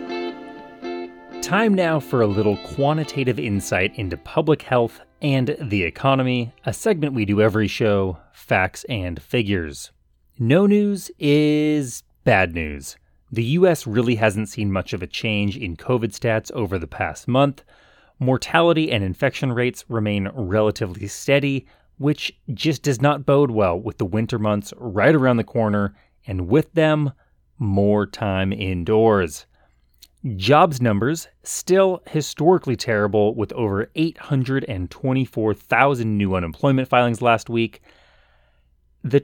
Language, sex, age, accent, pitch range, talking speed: English, male, 30-49, American, 95-135 Hz, 130 wpm